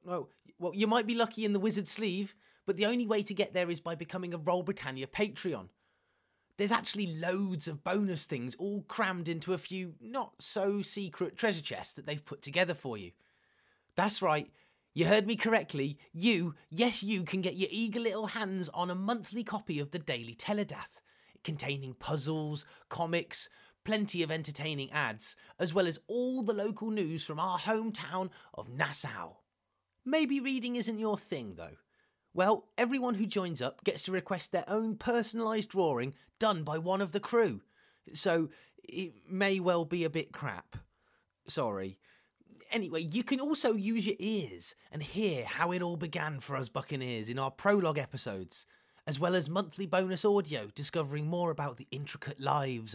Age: 30-49